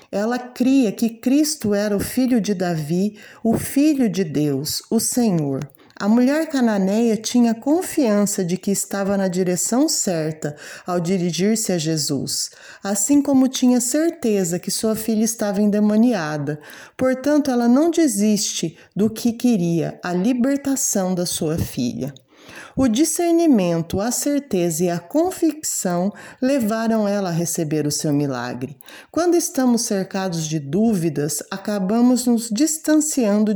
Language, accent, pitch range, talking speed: Portuguese, Brazilian, 175-255 Hz, 130 wpm